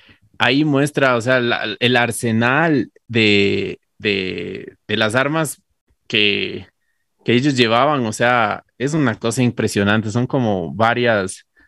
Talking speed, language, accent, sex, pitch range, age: 120 wpm, Spanish, Mexican, male, 100-120 Hz, 30-49